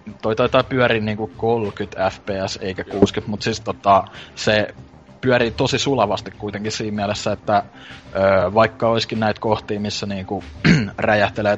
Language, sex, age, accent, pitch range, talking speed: Finnish, male, 20-39, native, 100-110 Hz, 135 wpm